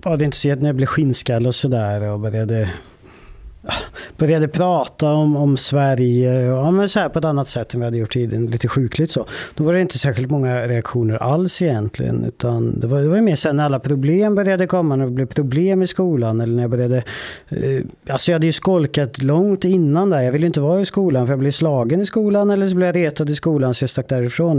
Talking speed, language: 235 wpm, Swedish